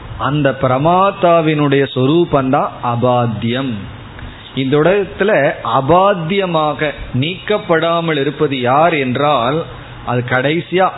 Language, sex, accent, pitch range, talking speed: Tamil, male, native, 125-165 Hz, 70 wpm